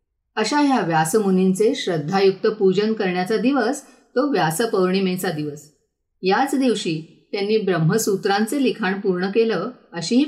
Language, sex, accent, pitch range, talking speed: Marathi, female, native, 180-245 Hz, 105 wpm